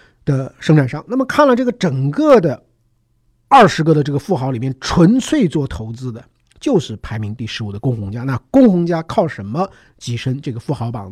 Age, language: 50-69, Chinese